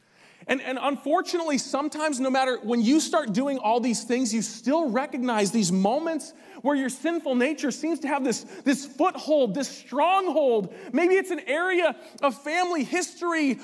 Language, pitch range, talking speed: English, 250-335 Hz, 165 wpm